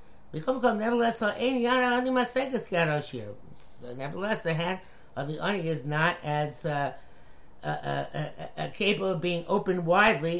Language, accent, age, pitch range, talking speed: English, American, 50-69, 145-190 Hz, 110 wpm